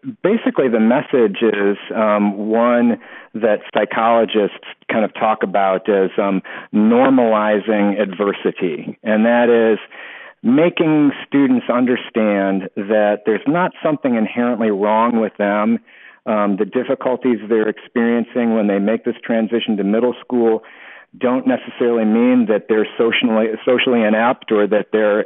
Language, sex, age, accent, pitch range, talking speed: English, male, 50-69, American, 105-120 Hz, 125 wpm